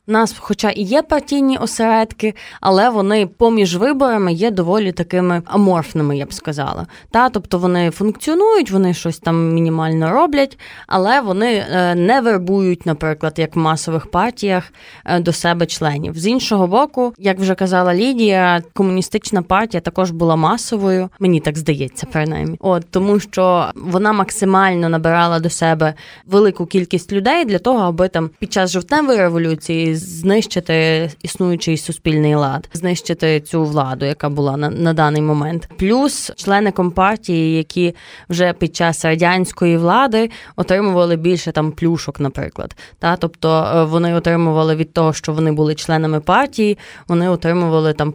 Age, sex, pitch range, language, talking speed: 20-39, female, 160-200 Hz, Ukrainian, 145 wpm